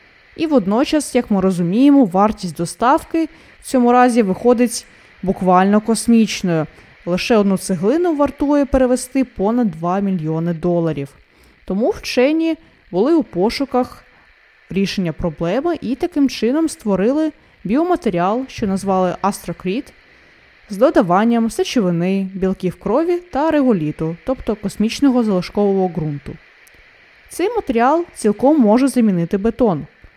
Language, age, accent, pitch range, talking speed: Ukrainian, 20-39, native, 185-255 Hz, 105 wpm